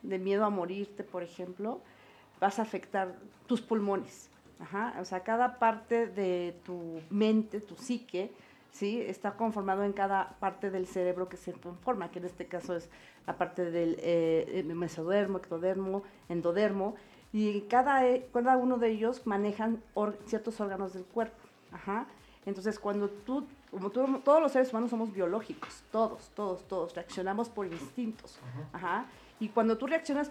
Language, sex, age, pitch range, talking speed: Spanish, female, 40-59, 180-220 Hz, 155 wpm